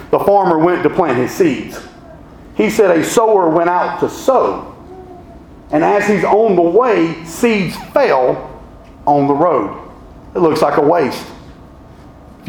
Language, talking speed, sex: English, 155 wpm, male